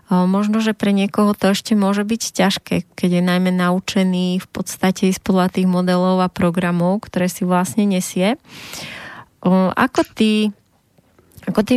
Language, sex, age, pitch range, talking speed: Slovak, female, 20-39, 185-205 Hz, 155 wpm